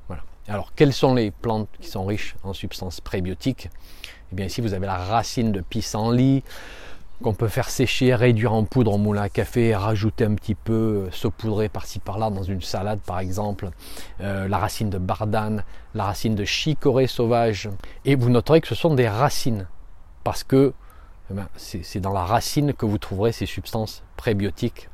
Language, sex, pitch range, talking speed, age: French, male, 95-120 Hz, 175 wpm, 30-49